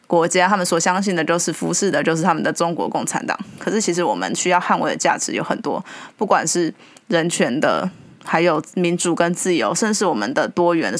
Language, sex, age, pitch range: Chinese, female, 20-39, 170-200 Hz